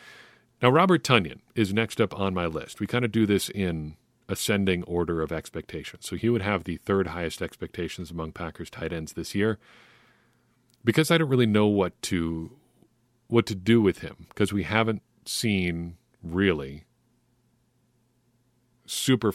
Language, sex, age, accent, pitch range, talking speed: English, male, 40-59, American, 90-120 Hz, 155 wpm